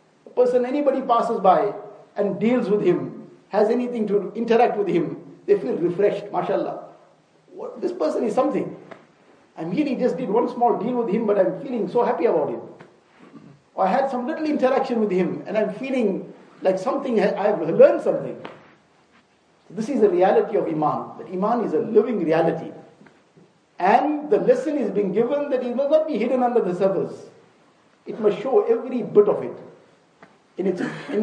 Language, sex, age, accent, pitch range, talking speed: English, male, 50-69, Indian, 190-255 Hz, 175 wpm